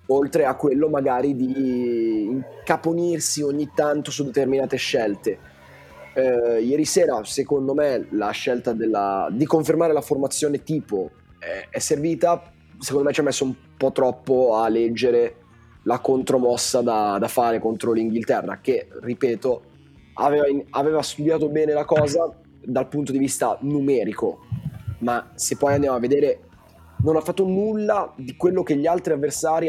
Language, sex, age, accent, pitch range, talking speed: Italian, male, 20-39, native, 125-160 Hz, 150 wpm